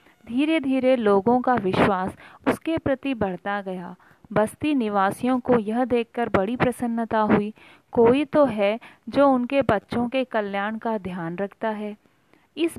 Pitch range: 205-270 Hz